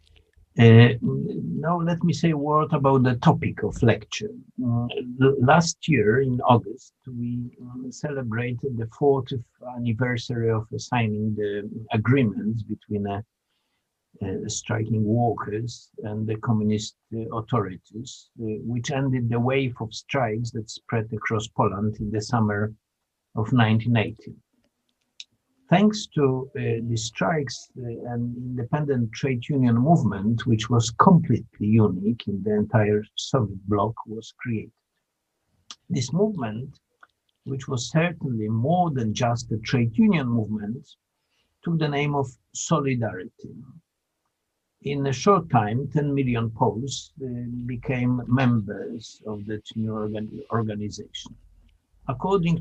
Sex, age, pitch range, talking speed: male, 50-69, 110-135 Hz, 115 wpm